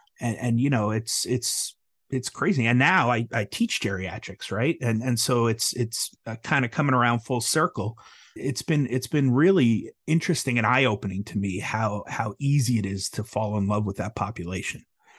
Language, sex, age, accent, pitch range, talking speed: English, male, 30-49, American, 105-125 Hz, 200 wpm